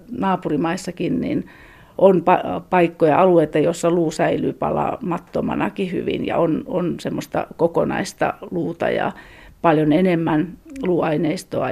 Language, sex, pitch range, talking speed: Finnish, female, 165-190 Hz, 100 wpm